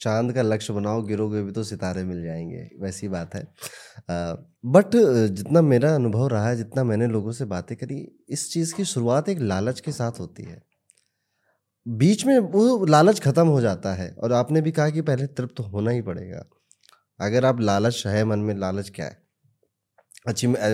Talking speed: 190 wpm